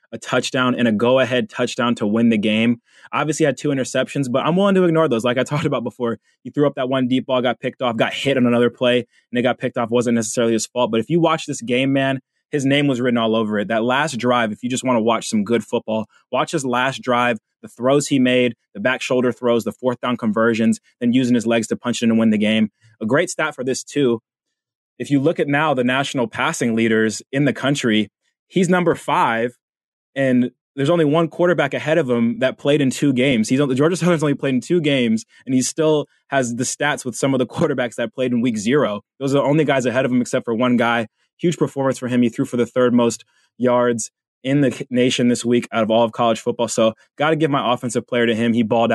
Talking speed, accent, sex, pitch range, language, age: 255 wpm, American, male, 115-140 Hz, English, 20-39